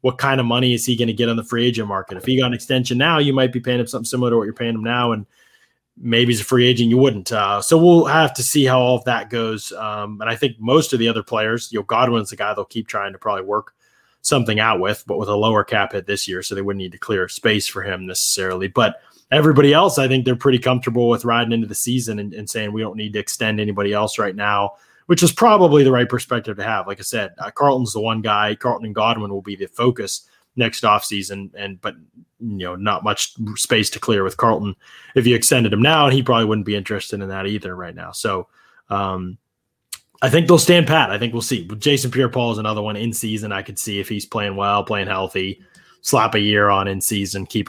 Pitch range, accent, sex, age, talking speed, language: 100-125 Hz, American, male, 20-39, 255 wpm, English